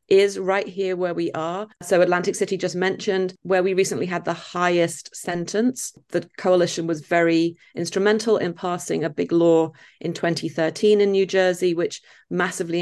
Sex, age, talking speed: female, 40-59, 165 wpm